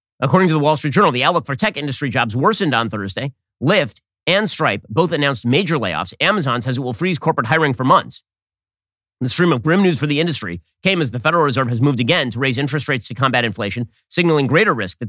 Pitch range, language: 115-155 Hz, English